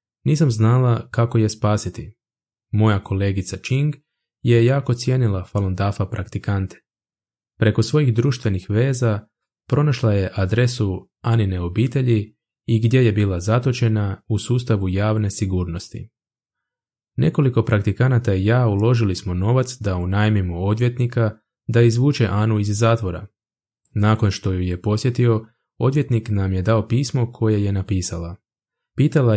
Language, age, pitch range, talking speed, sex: Croatian, 20-39, 100-120 Hz, 125 wpm, male